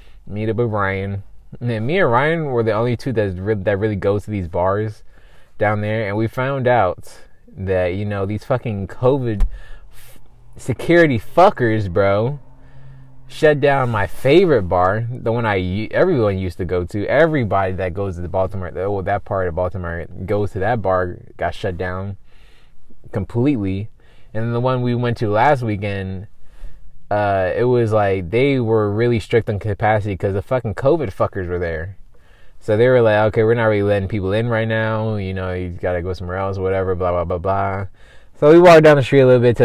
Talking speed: 200 wpm